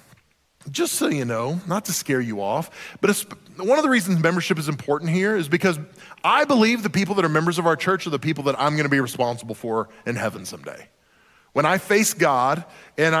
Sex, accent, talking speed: male, American, 215 wpm